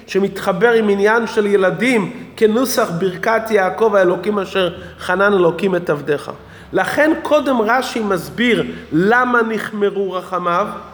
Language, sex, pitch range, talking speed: Hebrew, male, 195-255 Hz, 115 wpm